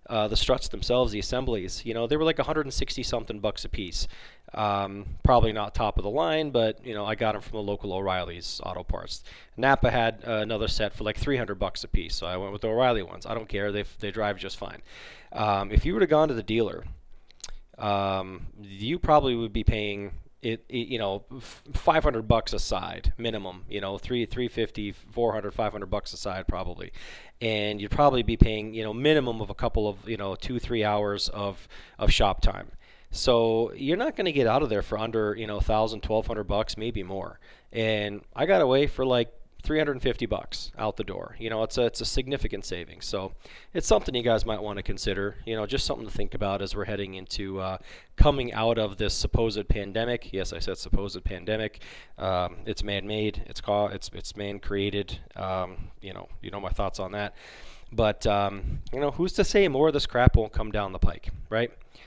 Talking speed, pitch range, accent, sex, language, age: 210 wpm, 100-115 Hz, American, male, English, 20-39